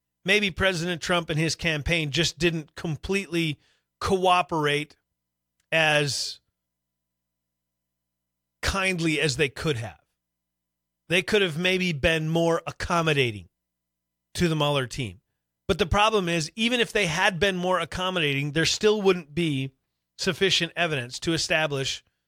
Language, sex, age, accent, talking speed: English, male, 30-49, American, 125 wpm